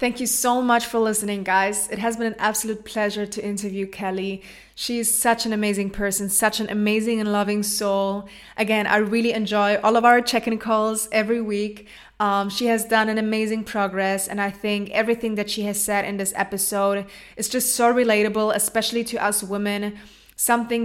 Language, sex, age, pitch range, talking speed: English, female, 20-39, 200-220 Hz, 190 wpm